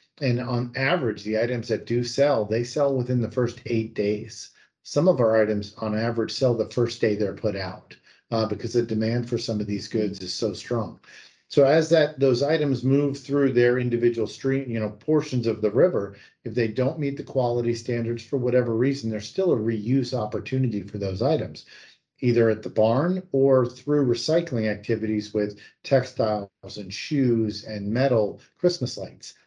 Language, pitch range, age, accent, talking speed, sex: English, 110-130 Hz, 50-69, American, 185 wpm, male